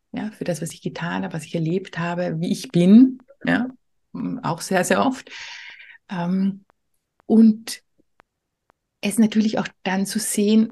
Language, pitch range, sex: German, 170-220 Hz, female